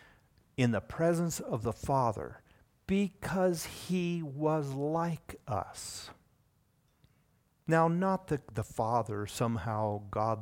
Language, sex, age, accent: English, male, 50-69, American